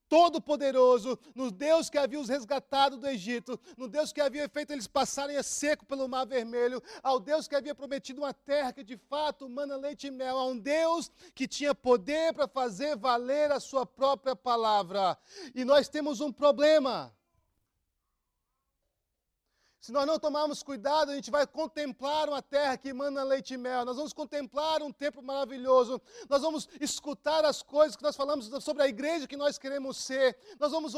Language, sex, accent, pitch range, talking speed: English, male, Brazilian, 190-290 Hz, 180 wpm